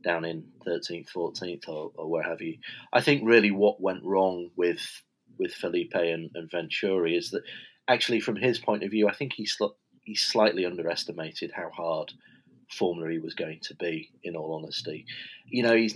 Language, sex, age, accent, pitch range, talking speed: English, male, 30-49, British, 85-110 Hz, 190 wpm